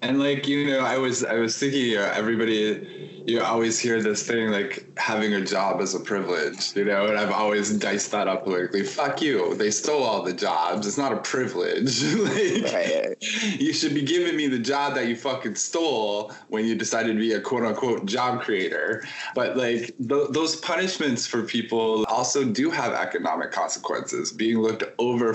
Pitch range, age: 100-125 Hz, 20-39